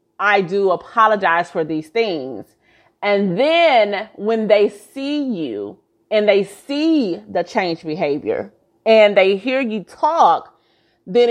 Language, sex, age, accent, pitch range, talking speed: English, female, 30-49, American, 170-220 Hz, 125 wpm